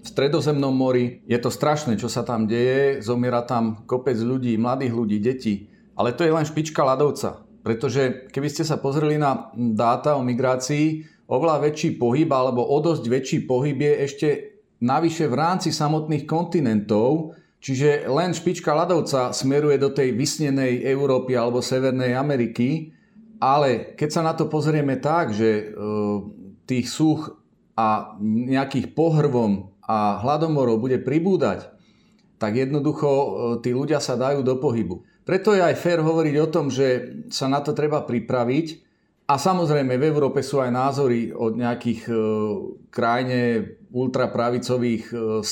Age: 40-59